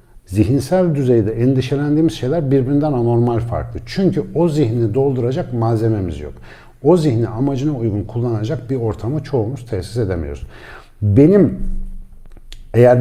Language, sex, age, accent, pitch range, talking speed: Turkish, male, 60-79, native, 100-130 Hz, 115 wpm